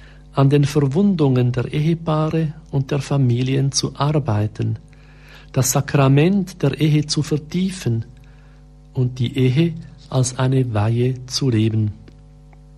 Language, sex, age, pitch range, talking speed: German, male, 50-69, 125-155 Hz, 115 wpm